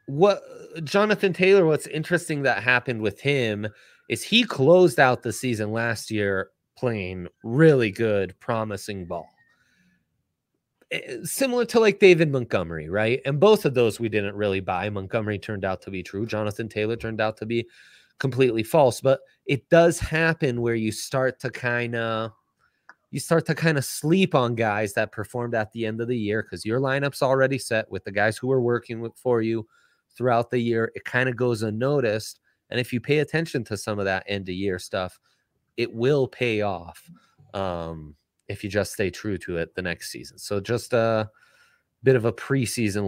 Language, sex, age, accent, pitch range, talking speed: English, male, 30-49, American, 105-135 Hz, 185 wpm